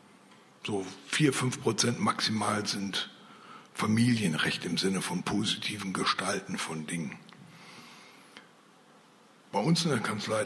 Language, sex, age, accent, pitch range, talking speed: German, male, 60-79, German, 120-170 Hz, 110 wpm